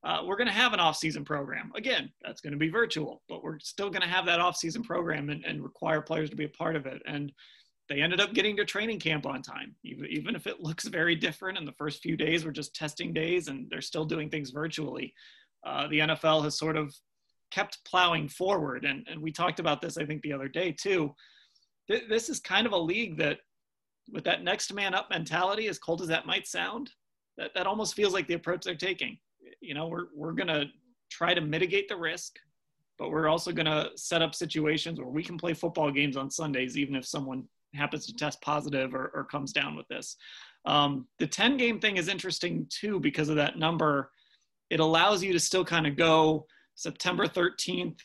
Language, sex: English, male